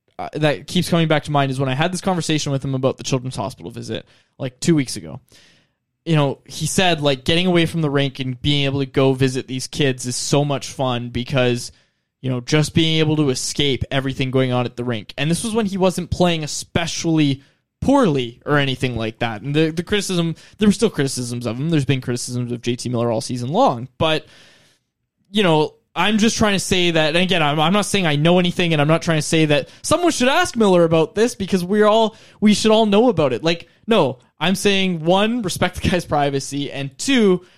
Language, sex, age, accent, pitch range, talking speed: English, male, 20-39, American, 135-180 Hz, 230 wpm